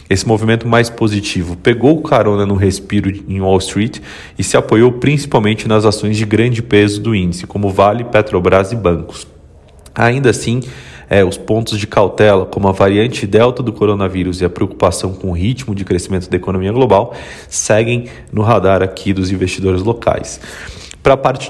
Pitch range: 95-115 Hz